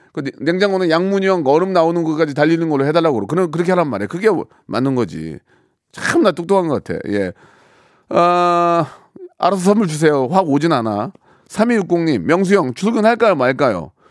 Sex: male